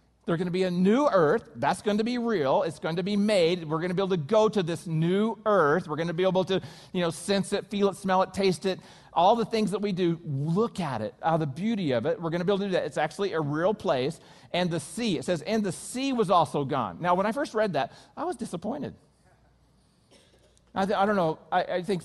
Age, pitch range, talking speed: 40-59, 155-200 Hz, 265 wpm